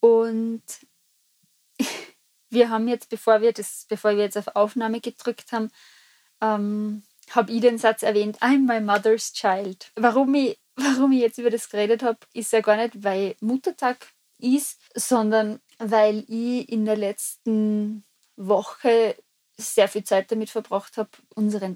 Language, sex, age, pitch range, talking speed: German, female, 20-39, 205-235 Hz, 150 wpm